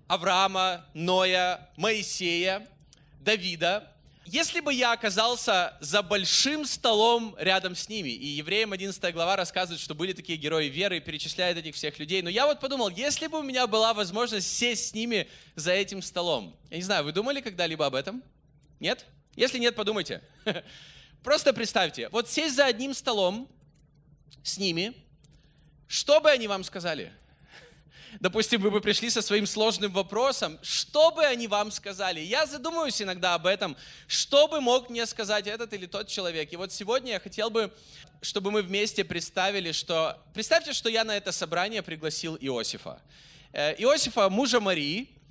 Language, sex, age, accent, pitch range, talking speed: Russian, male, 20-39, native, 175-235 Hz, 160 wpm